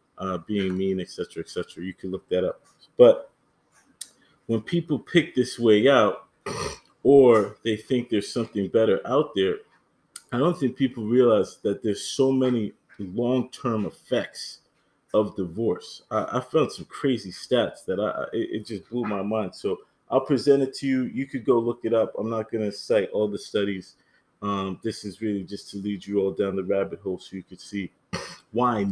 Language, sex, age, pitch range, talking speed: English, male, 30-49, 100-135 Hz, 190 wpm